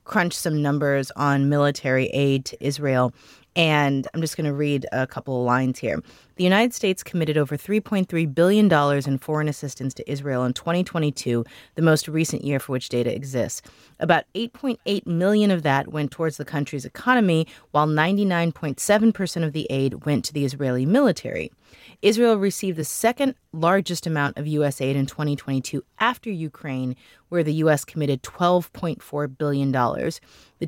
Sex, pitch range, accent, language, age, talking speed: female, 135-175 Hz, American, English, 30-49, 160 wpm